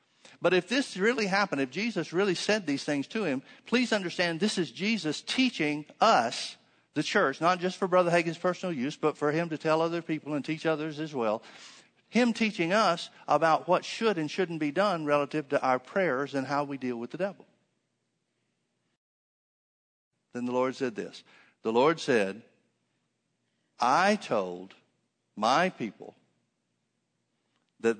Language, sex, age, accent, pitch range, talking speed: English, male, 50-69, American, 135-180 Hz, 160 wpm